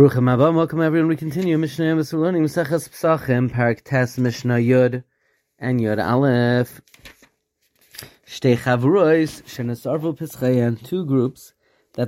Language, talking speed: English, 100 wpm